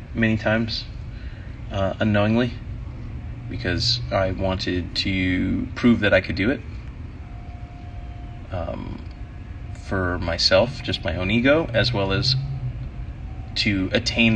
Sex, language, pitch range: male, English, 100-120 Hz